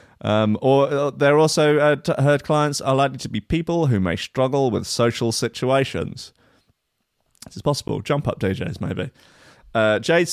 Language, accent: English, British